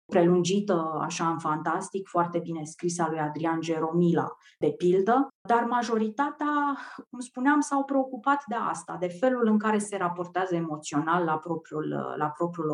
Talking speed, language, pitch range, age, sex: 145 wpm, Romanian, 165-220 Hz, 30-49, female